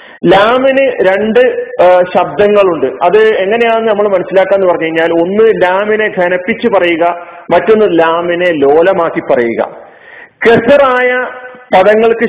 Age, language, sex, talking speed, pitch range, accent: 40-59, Malayalam, male, 100 wpm, 175-220 Hz, native